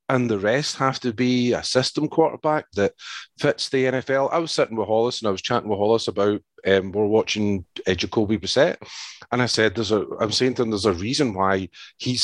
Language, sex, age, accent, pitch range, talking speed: English, male, 40-59, British, 100-125 Hz, 215 wpm